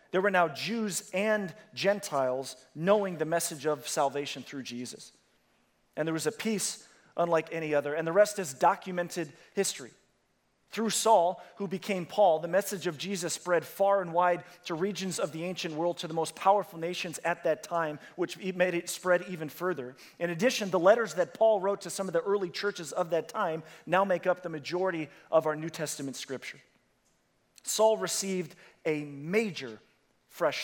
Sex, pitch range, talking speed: male, 160-200 Hz, 180 wpm